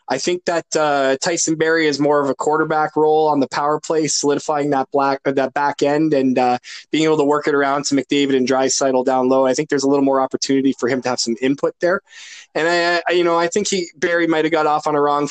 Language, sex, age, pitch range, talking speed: English, male, 20-39, 130-170 Hz, 265 wpm